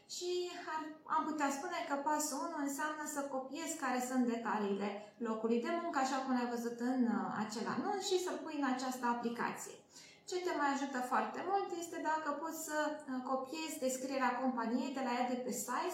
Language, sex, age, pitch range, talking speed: Romanian, female, 20-39, 245-320 Hz, 185 wpm